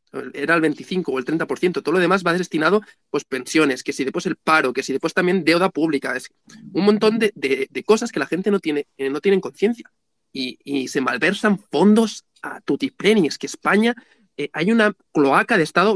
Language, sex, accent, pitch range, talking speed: Spanish, male, Spanish, 145-190 Hz, 200 wpm